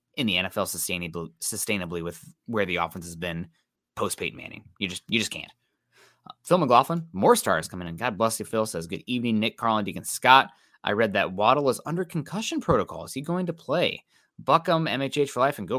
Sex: male